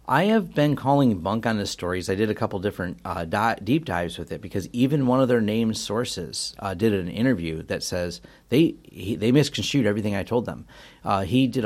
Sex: male